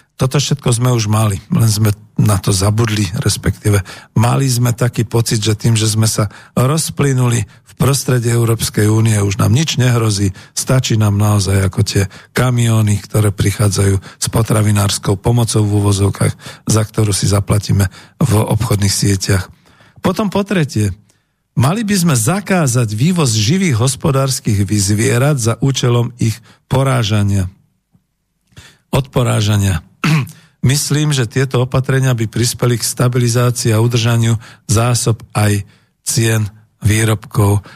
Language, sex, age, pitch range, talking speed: Slovak, male, 50-69, 110-130 Hz, 125 wpm